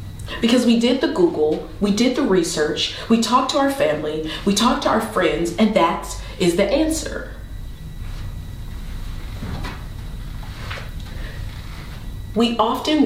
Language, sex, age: English, female, 30-49